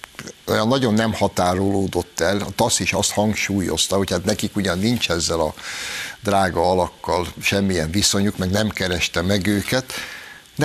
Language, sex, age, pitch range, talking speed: Hungarian, male, 60-79, 90-110 Hz, 145 wpm